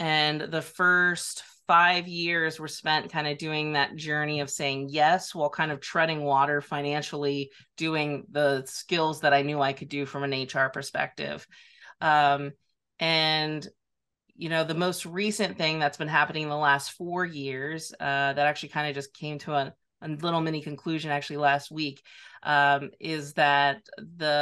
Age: 30-49